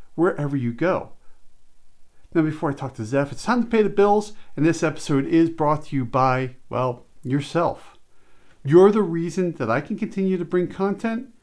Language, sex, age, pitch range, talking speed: English, male, 50-69, 135-195 Hz, 185 wpm